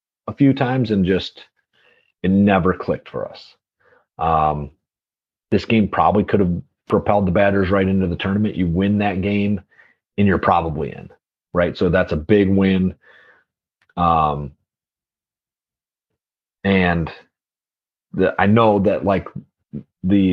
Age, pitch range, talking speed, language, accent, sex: 30-49, 85-100 Hz, 130 wpm, English, American, male